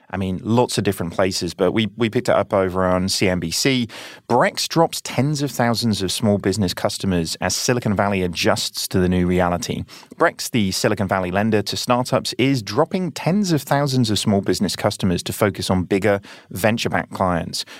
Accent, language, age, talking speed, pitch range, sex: British, English, 30-49, 180 wpm, 95-130 Hz, male